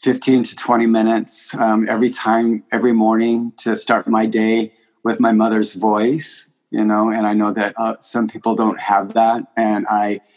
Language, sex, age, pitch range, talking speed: English, male, 30-49, 105-120 Hz, 180 wpm